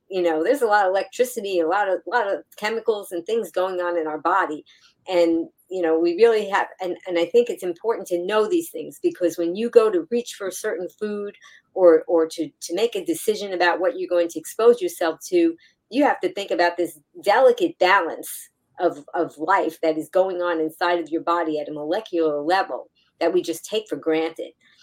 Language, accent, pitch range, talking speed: English, American, 160-205 Hz, 220 wpm